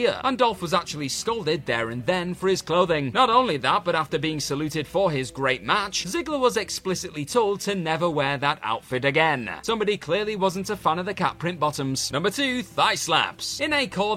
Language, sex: English, male